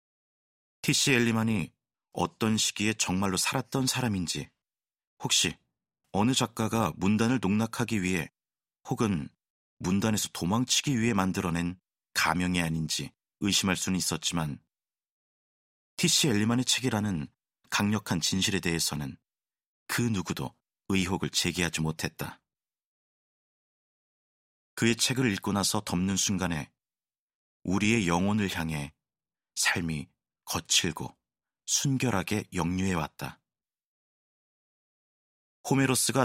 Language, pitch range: Korean, 85-115 Hz